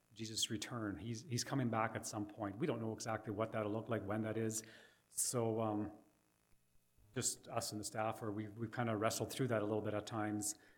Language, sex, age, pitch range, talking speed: English, male, 40-59, 90-115 Hz, 225 wpm